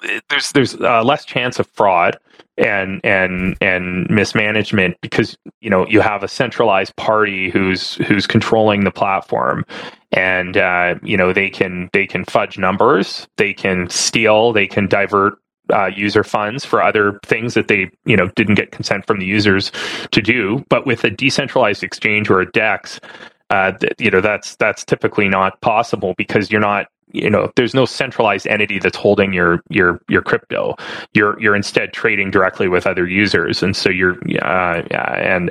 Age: 30-49